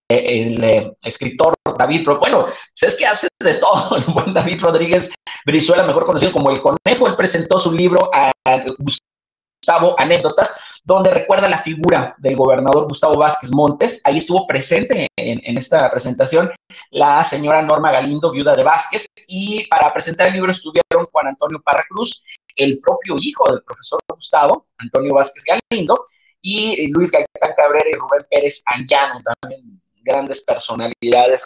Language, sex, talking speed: Spanish, male, 155 wpm